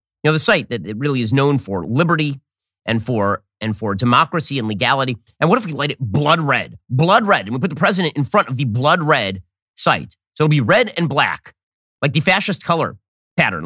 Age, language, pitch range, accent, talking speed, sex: 30-49, English, 115-165 Hz, American, 225 wpm, male